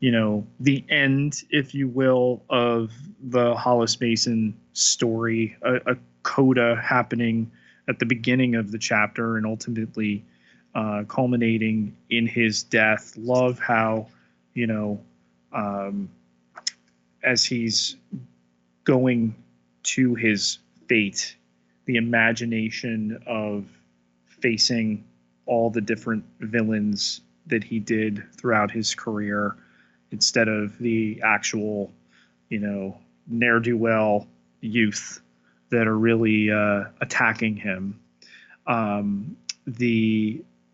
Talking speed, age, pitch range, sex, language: 105 wpm, 30-49, 105-115 Hz, male, English